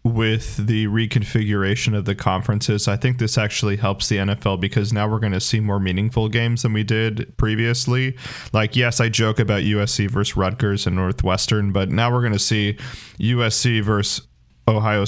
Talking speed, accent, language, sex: 180 wpm, American, English, male